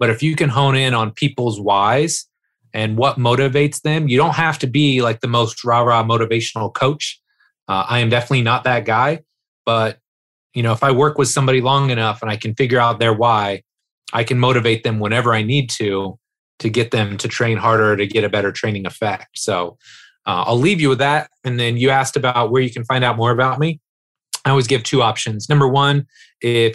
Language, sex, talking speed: English, male, 215 wpm